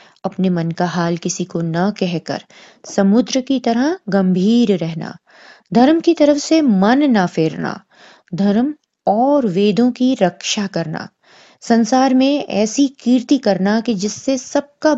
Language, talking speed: Hindi, 145 wpm